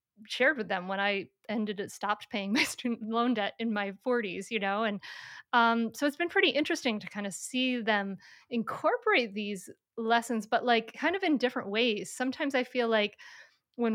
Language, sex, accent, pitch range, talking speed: English, female, American, 205-250 Hz, 195 wpm